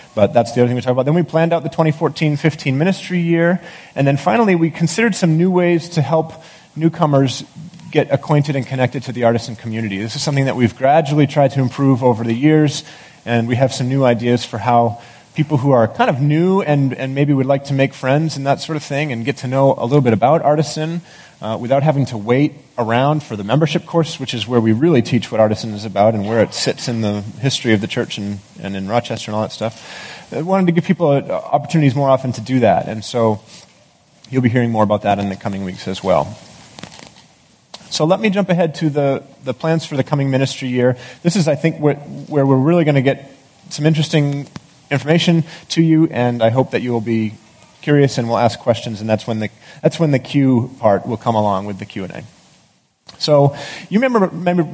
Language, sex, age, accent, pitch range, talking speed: English, male, 30-49, American, 120-160 Hz, 230 wpm